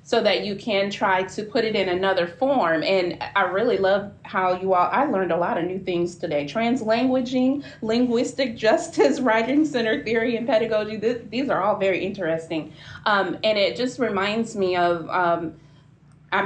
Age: 30-49